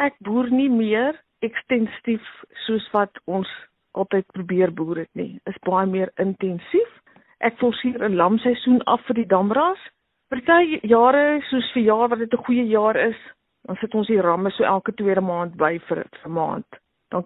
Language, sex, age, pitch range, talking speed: Swedish, female, 50-69, 190-235 Hz, 185 wpm